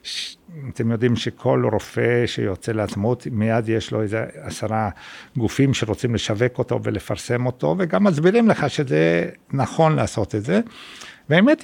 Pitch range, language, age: 110-135 Hz, Hebrew, 60-79